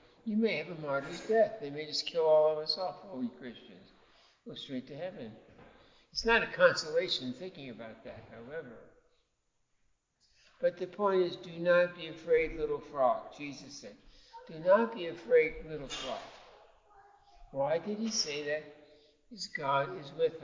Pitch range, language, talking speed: 140-205 Hz, English, 165 wpm